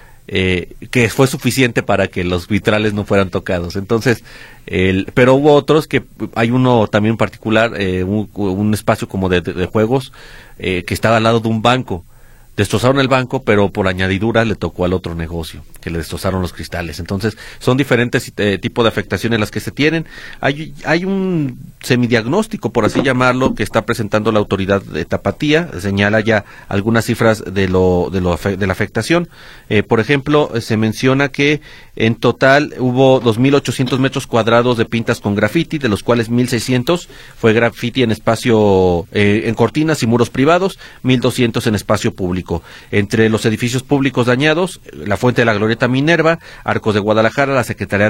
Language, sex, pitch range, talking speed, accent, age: Spanish, male, 100-130 Hz, 175 wpm, Mexican, 40-59